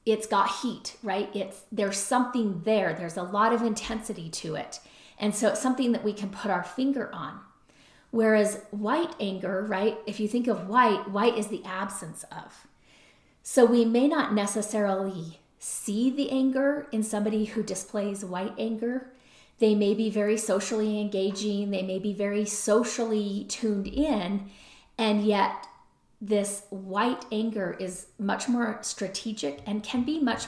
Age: 40-59